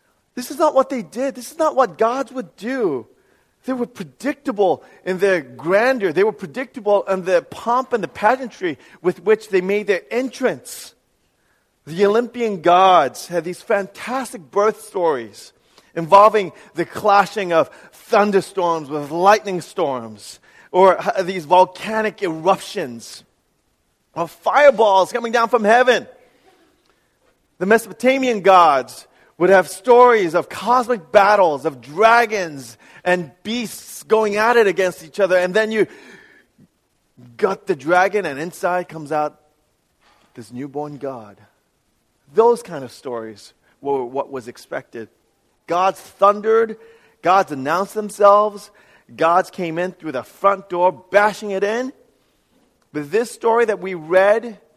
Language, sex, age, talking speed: English, male, 40-59, 135 wpm